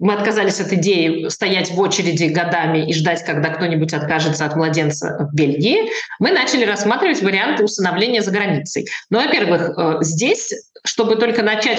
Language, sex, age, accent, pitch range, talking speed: Russian, female, 20-39, native, 165-220 Hz, 155 wpm